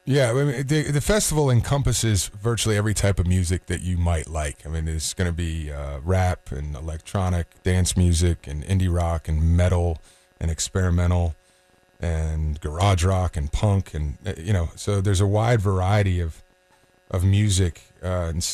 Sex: male